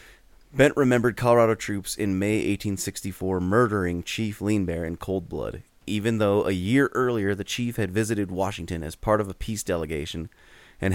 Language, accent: English, American